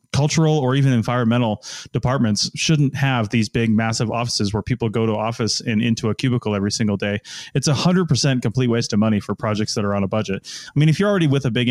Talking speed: 225 wpm